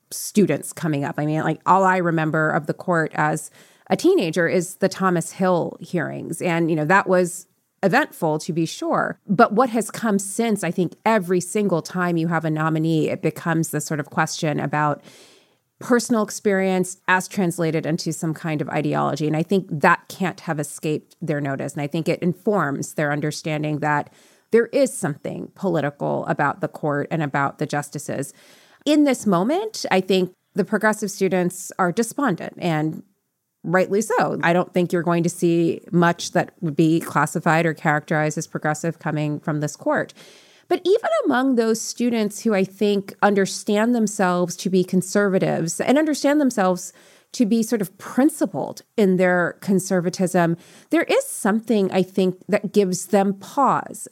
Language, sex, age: English, female, 30-49